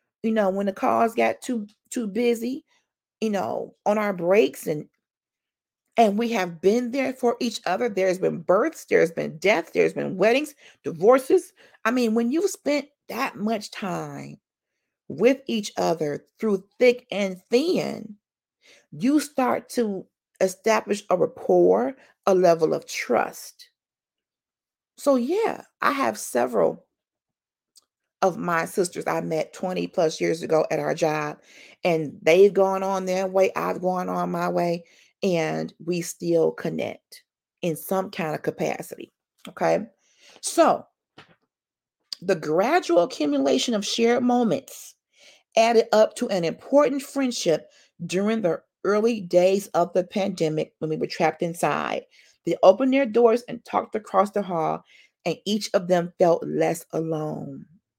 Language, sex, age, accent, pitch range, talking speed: English, female, 40-59, American, 175-245 Hz, 140 wpm